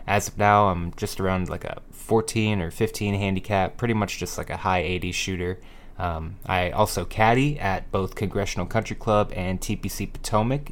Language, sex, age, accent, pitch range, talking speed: English, male, 20-39, American, 95-110 Hz, 180 wpm